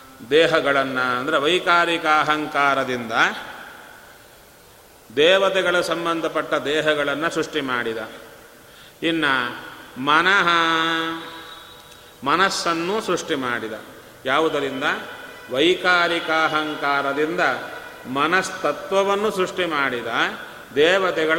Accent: native